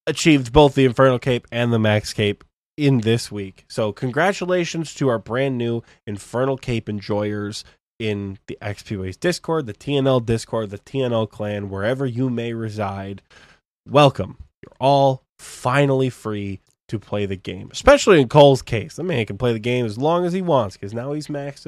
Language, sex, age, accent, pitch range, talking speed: English, male, 20-39, American, 105-150 Hz, 180 wpm